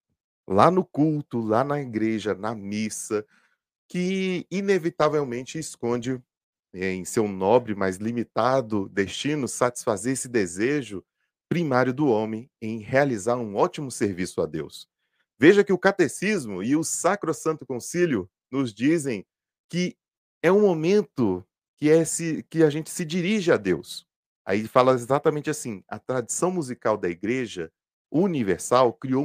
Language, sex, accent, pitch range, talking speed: Portuguese, male, Brazilian, 110-165 Hz, 135 wpm